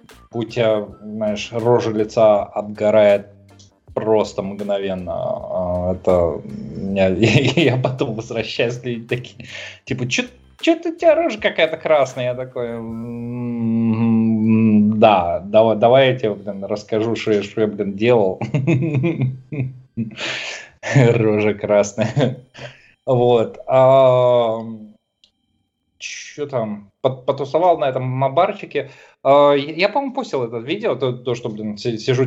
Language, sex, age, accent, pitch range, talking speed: Russian, male, 20-39, native, 110-130 Hz, 100 wpm